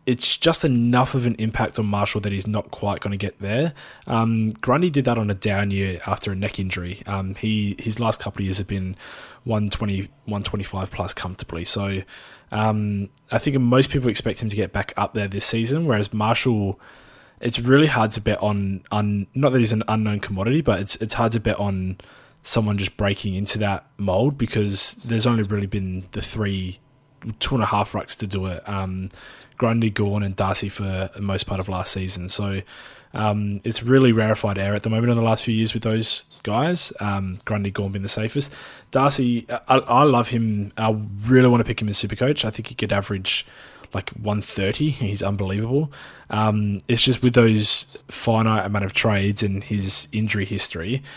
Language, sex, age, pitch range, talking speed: English, male, 20-39, 100-115 Hz, 200 wpm